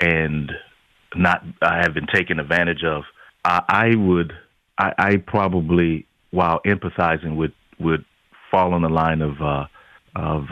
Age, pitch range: 30-49, 80-90 Hz